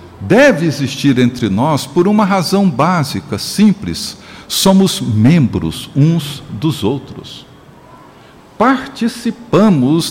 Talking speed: 90 wpm